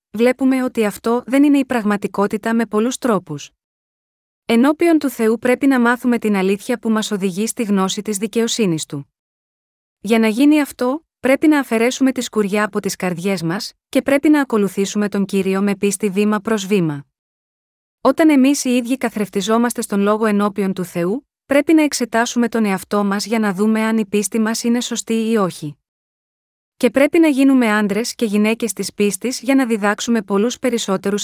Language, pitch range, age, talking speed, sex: Greek, 205-250 Hz, 20-39, 175 wpm, female